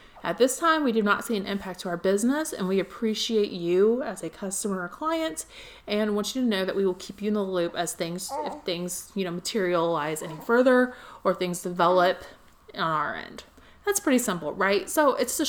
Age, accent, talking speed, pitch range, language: 30-49, American, 215 wpm, 190-260 Hz, English